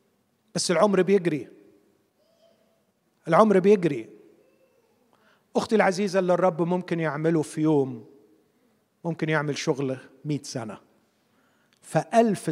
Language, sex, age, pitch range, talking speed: Arabic, male, 50-69, 150-220 Hz, 90 wpm